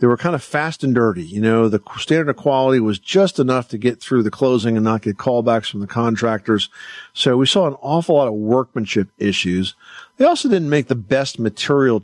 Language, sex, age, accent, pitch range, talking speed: English, male, 50-69, American, 110-135 Hz, 220 wpm